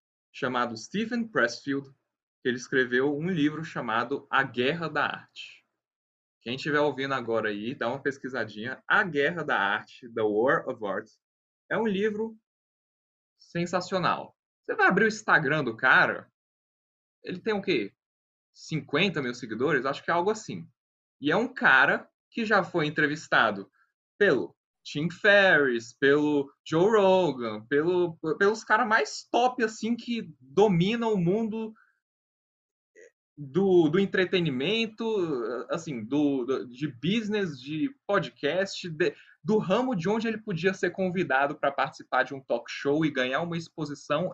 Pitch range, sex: 140-210 Hz, male